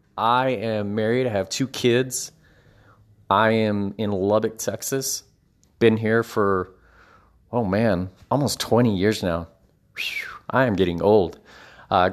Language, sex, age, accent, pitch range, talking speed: English, male, 30-49, American, 100-120 Hz, 140 wpm